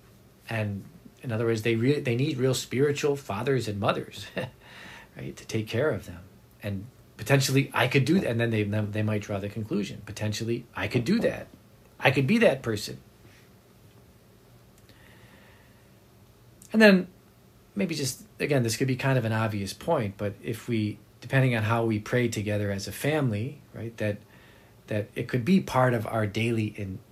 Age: 40-59